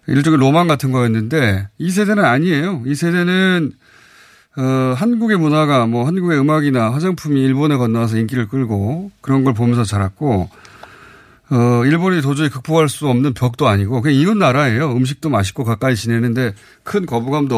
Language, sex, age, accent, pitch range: Korean, male, 30-49, native, 120-180 Hz